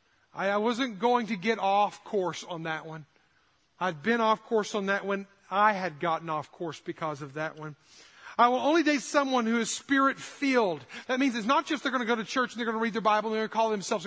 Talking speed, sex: 245 wpm, male